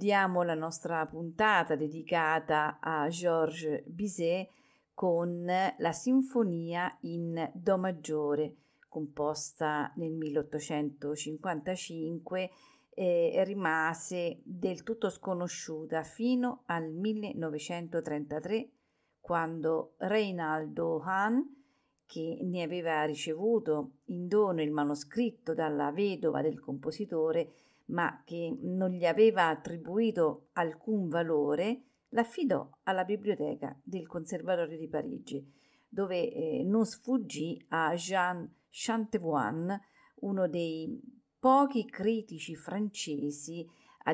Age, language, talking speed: 40-59, Italian, 90 wpm